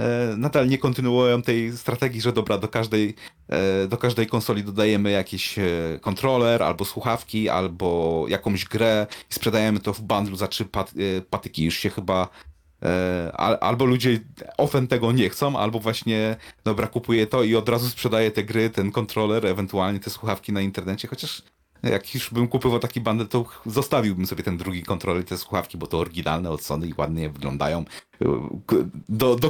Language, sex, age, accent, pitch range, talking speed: Polish, male, 30-49, native, 95-120 Hz, 165 wpm